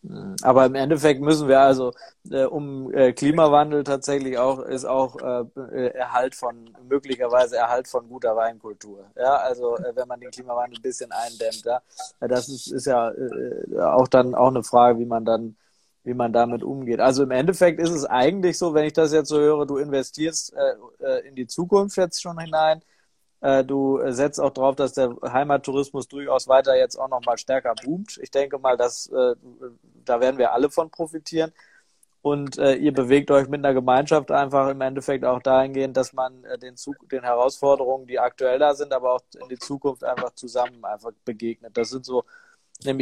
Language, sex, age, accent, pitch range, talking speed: German, male, 20-39, German, 125-145 Hz, 175 wpm